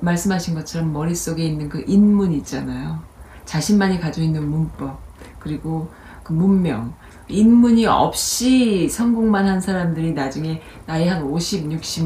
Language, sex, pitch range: Korean, female, 160-215 Hz